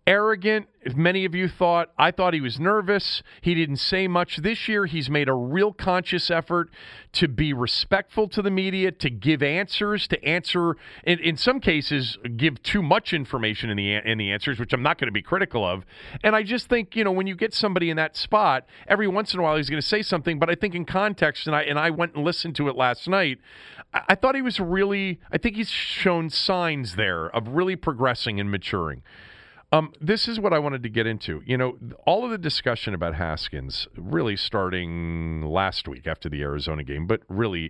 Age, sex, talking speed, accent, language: 40-59, male, 220 wpm, American, English